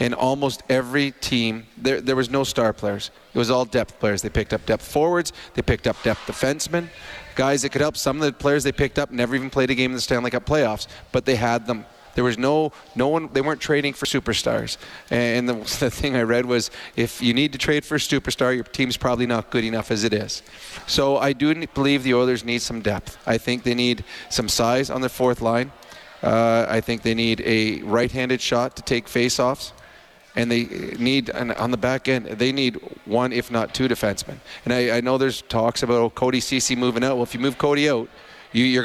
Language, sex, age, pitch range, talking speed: English, male, 30-49, 115-135 Hz, 225 wpm